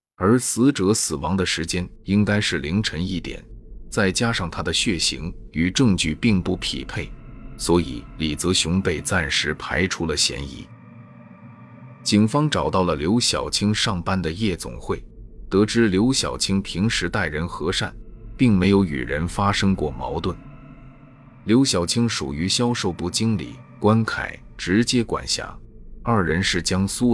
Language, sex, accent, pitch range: Chinese, male, native, 85-110 Hz